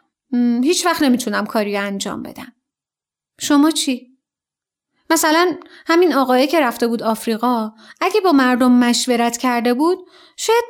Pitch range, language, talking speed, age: 240-330 Hz, Persian, 125 wpm, 30-49